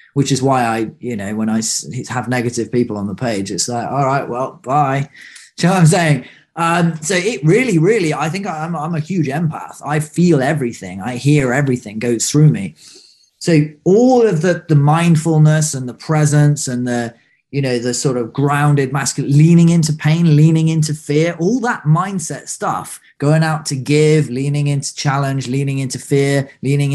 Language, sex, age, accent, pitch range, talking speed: English, male, 20-39, British, 130-155 Hz, 190 wpm